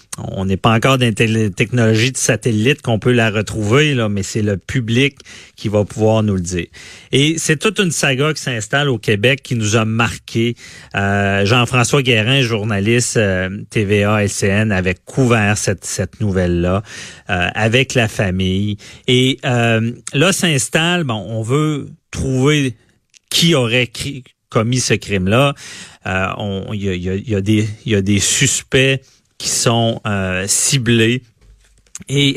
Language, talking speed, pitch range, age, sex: French, 155 wpm, 105-135 Hz, 40-59, male